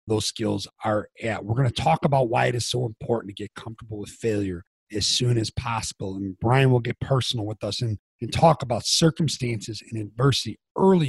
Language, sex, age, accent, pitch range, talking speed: English, male, 40-59, American, 105-130 Hz, 205 wpm